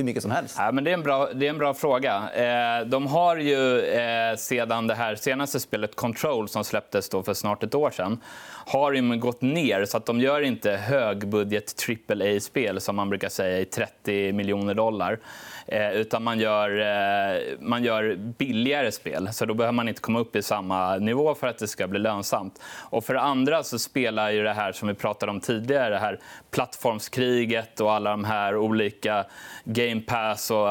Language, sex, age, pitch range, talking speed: Swedish, male, 20-39, 105-130 Hz, 190 wpm